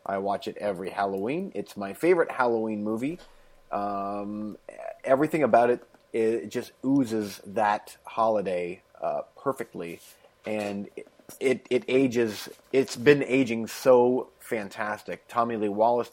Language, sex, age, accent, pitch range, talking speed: English, male, 30-49, American, 100-120 Hz, 125 wpm